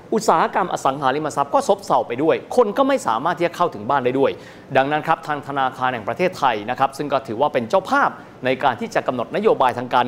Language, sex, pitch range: Thai, male, 135-190 Hz